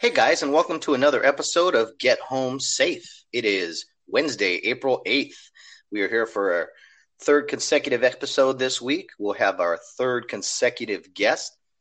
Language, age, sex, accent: English, 30-49, male, American